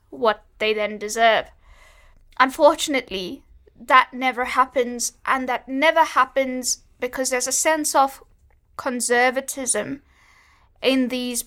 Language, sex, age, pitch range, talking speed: English, female, 10-29, 230-265 Hz, 105 wpm